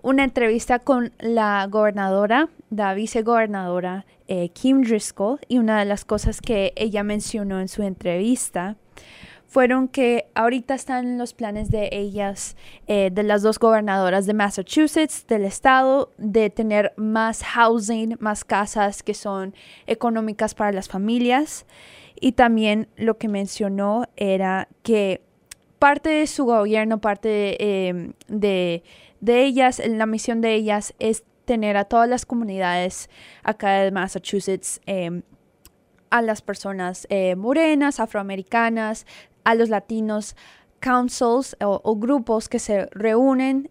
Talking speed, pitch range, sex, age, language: 135 wpm, 200-235 Hz, female, 20-39, English